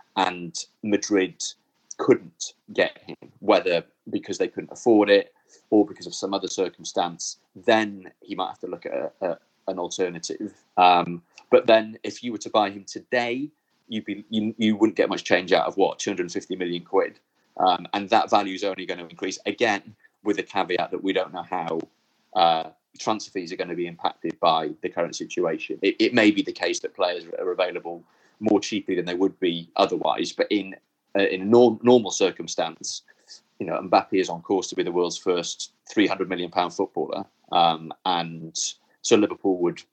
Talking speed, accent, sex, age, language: 195 wpm, British, male, 30-49, English